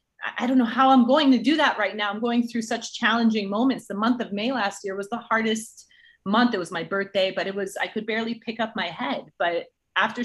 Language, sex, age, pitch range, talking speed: English, female, 30-49, 185-230 Hz, 250 wpm